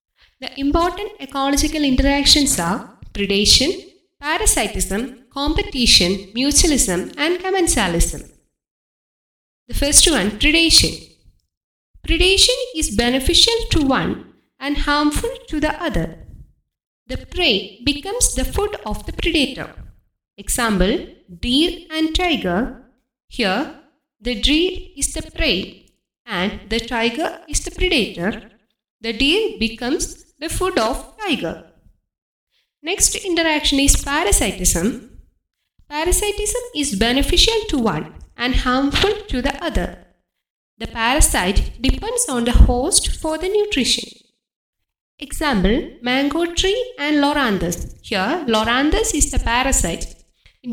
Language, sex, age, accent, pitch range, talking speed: English, female, 20-39, Indian, 235-345 Hz, 105 wpm